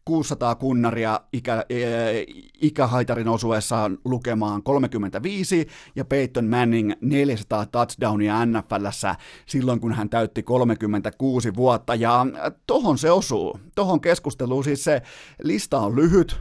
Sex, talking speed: male, 115 wpm